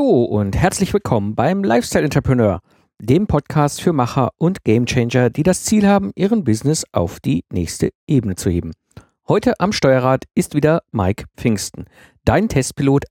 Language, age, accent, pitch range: German, 50-69, German, 110-140 Hz